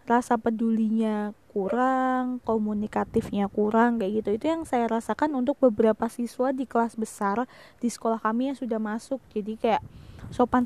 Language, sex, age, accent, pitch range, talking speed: Indonesian, female, 20-39, native, 220-255 Hz, 145 wpm